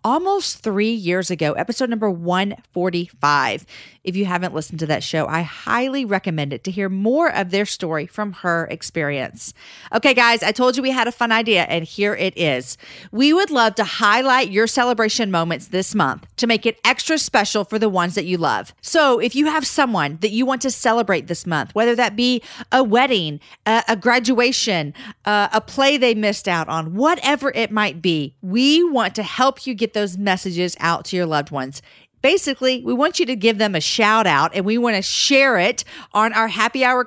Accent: American